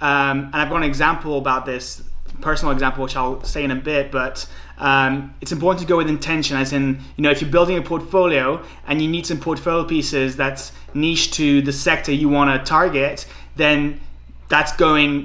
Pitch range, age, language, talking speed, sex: 135-155 Hz, 20-39, English, 195 wpm, male